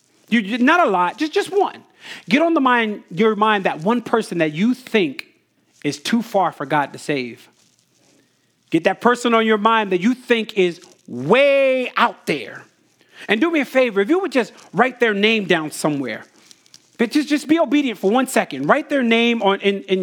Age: 40-59